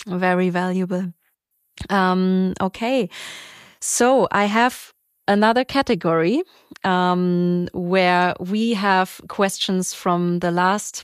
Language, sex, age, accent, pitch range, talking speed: English, female, 20-39, German, 180-210 Hz, 90 wpm